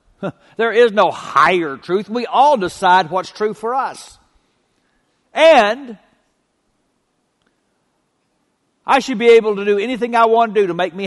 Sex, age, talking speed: male, 60-79, 145 wpm